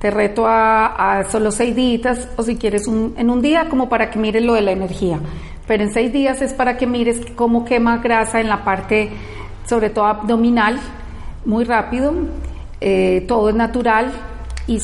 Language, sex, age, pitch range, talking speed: Spanish, female, 40-59, 200-235 Hz, 185 wpm